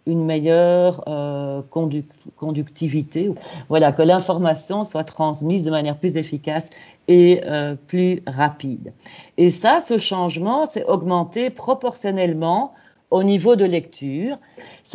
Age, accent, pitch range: 50-69, French, 150-180 Hz